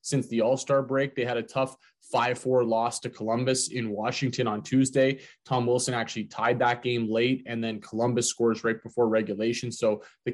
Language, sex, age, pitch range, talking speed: English, male, 20-39, 115-130 Hz, 185 wpm